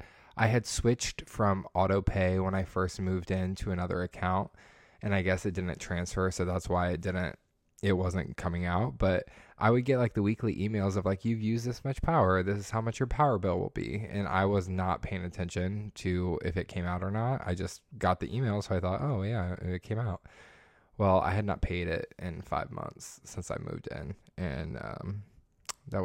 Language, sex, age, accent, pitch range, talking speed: English, male, 20-39, American, 90-110 Hz, 220 wpm